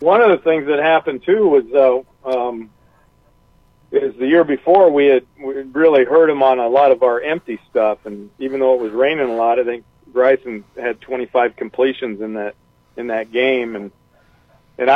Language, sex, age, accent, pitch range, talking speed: English, male, 50-69, American, 115-135 Hz, 195 wpm